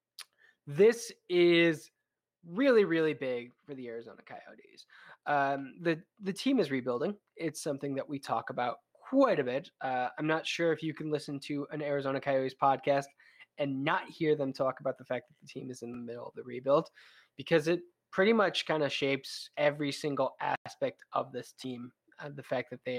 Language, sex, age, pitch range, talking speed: English, male, 20-39, 135-160 Hz, 190 wpm